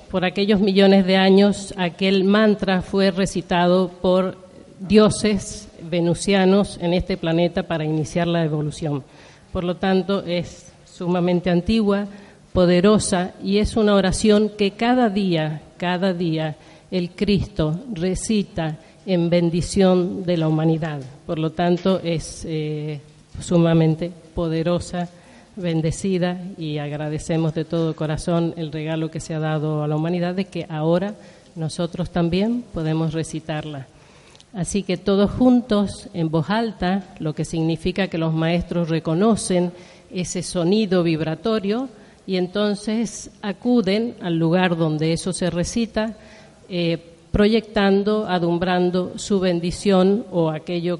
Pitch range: 165-195 Hz